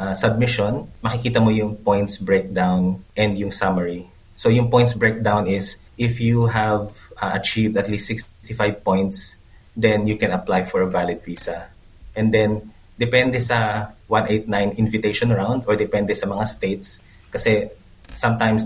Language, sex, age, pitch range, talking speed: Filipino, male, 30-49, 95-110 Hz, 150 wpm